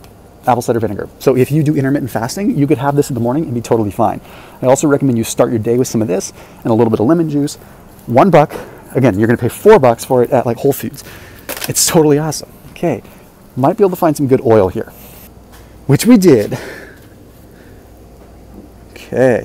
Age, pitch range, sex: 30-49, 110-145 Hz, male